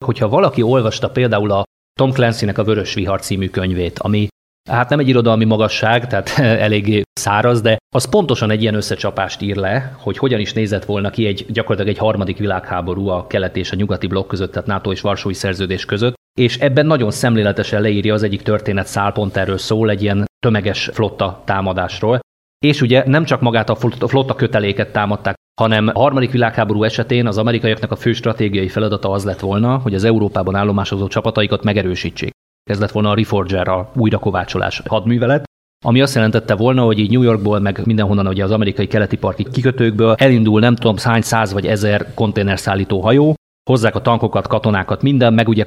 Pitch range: 100-120 Hz